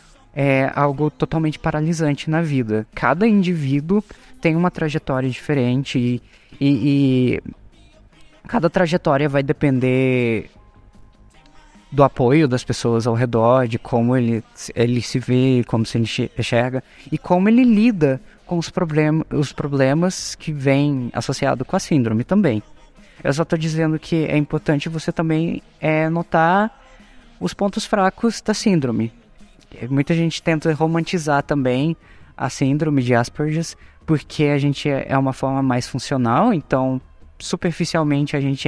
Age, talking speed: 20-39, 130 wpm